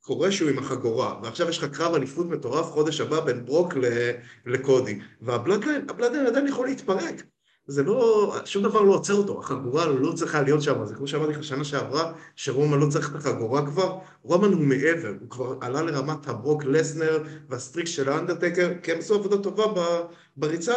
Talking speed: 175 wpm